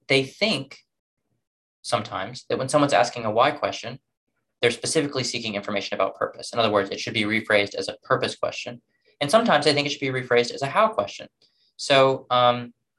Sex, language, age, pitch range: male, English, 20-39, 105-145 Hz